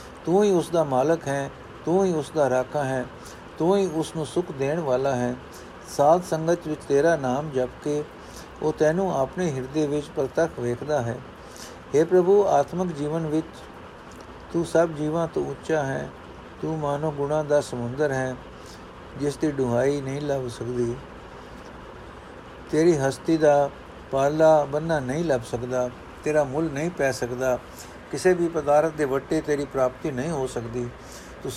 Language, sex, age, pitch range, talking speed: Punjabi, male, 60-79, 125-155 Hz, 150 wpm